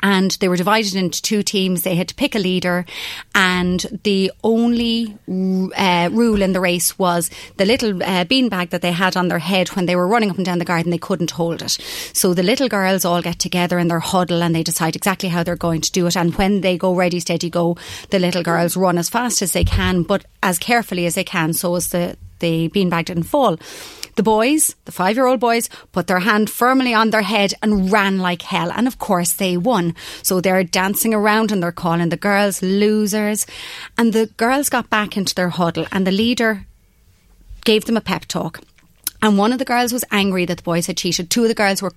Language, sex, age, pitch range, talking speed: English, female, 30-49, 175-215 Hz, 225 wpm